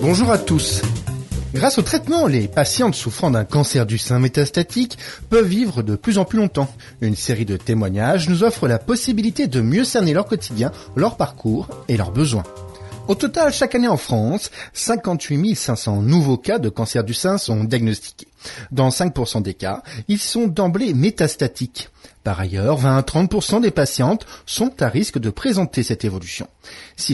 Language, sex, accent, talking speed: French, male, French, 170 wpm